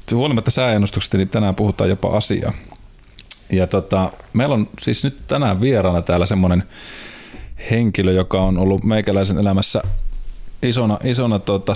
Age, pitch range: 30-49, 95-110 Hz